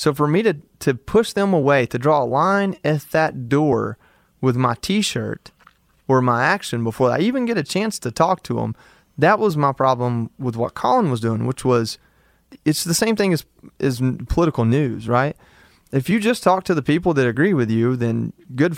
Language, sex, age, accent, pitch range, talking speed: English, male, 30-49, American, 120-150 Hz, 205 wpm